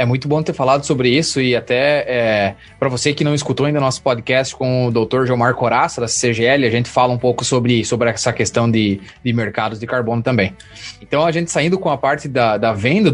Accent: Brazilian